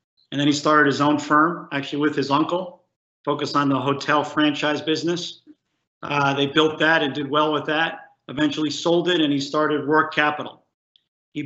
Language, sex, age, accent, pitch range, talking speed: English, male, 50-69, American, 135-155 Hz, 185 wpm